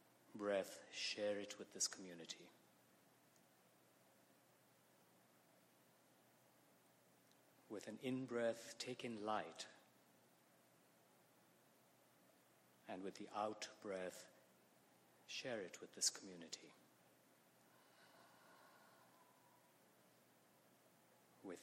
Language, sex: English, male